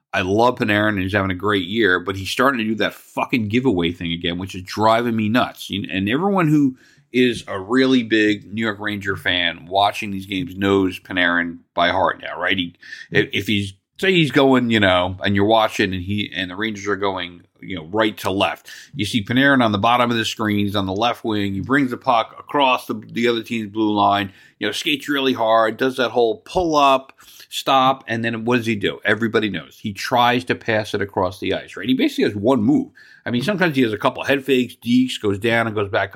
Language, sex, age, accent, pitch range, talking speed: English, male, 40-59, American, 100-125 Hz, 230 wpm